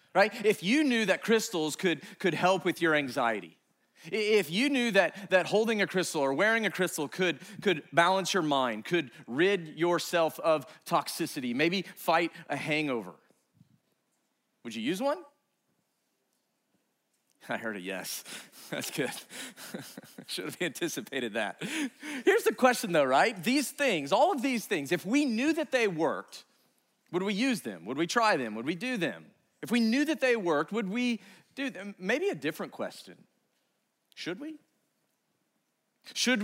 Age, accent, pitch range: 40-59, American, 150-220 Hz